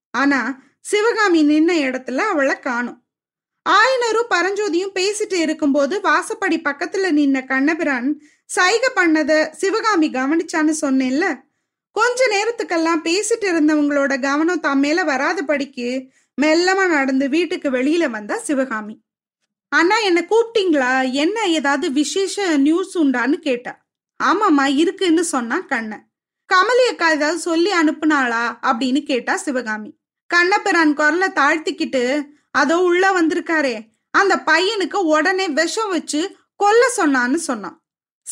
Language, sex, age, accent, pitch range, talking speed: Tamil, female, 20-39, native, 275-370 Hz, 105 wpm